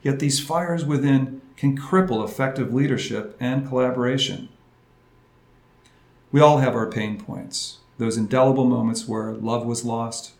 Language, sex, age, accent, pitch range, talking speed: English, male, 50-69, American, 120-145 Hz, 135 wpm